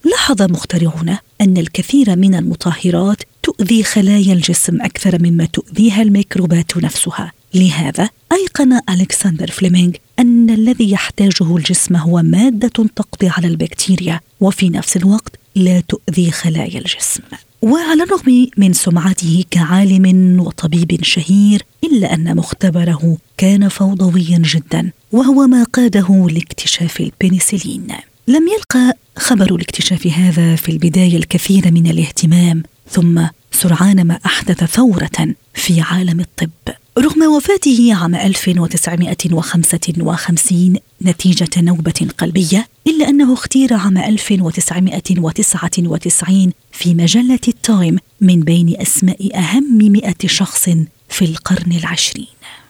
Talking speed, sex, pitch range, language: 105 wpm, female, 170-205 Hz, Arabic